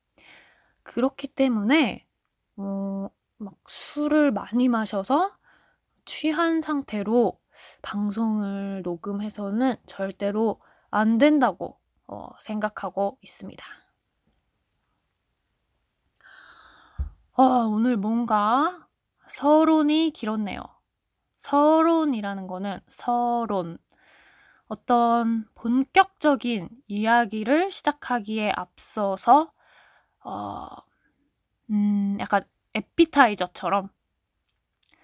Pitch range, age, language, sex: 200-275 Hz, 20-39, Korean, female